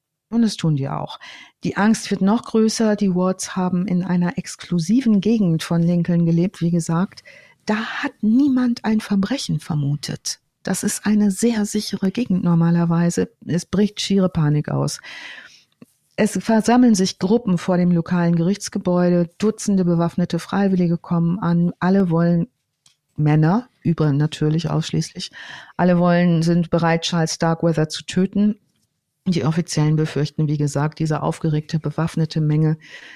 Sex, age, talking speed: female, 50-69, 140 wpm